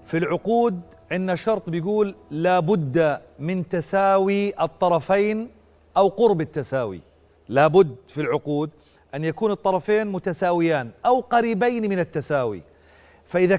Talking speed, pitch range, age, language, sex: 105 wpm, 160-225 Hz, 40-59, Arabic, male